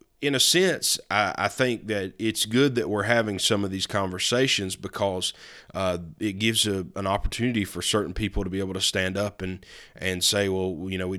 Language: English